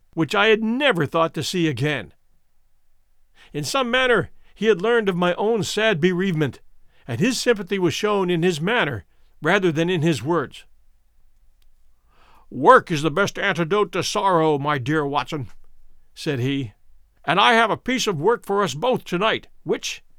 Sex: male